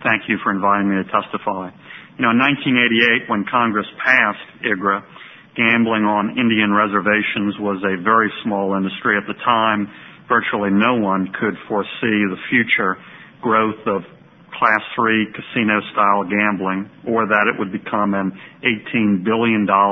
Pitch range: 100-110 Hz